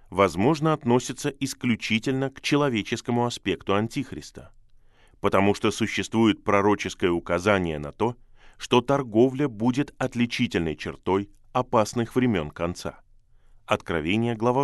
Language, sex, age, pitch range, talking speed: Russian, male, 20-39, 100-125 Hz, 100 wpm